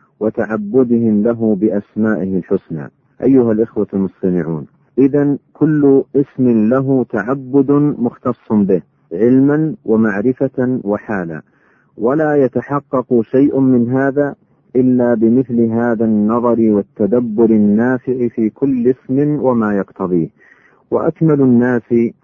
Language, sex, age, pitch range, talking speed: Arabic, male, 50-69, 110-130 Hz, 95 wpm